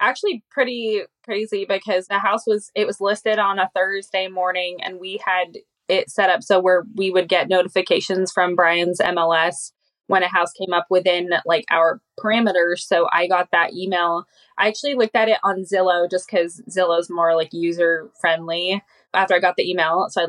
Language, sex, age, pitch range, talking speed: English, female, 20-39, 175-210 Hz, 190 wpm